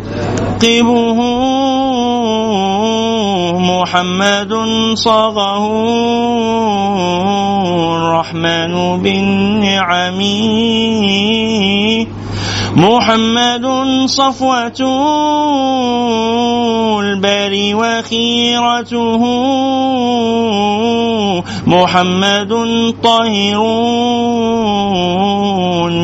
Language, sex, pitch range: Arabic, male, 180-225 Hz